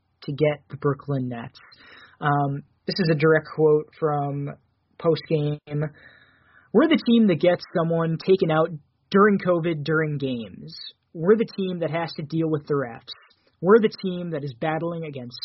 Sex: male